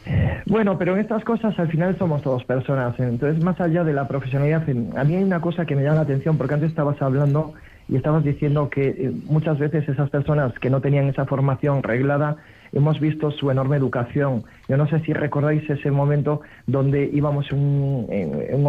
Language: Spanish